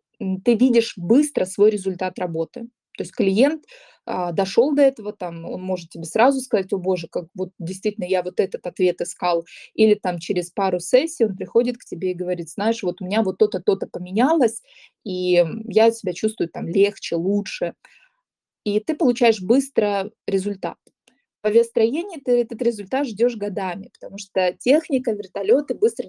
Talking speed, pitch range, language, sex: 165 wpm, 190-240 Hz, Russian, female